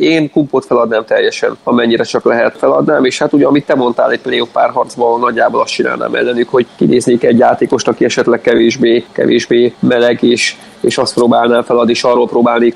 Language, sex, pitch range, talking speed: Hungarian, male, 115-125 Hz, 185 wpm